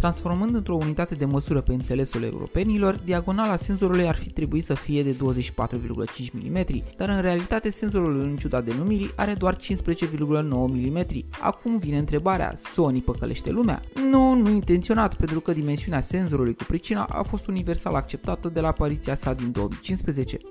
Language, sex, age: Romanian, male, 20-39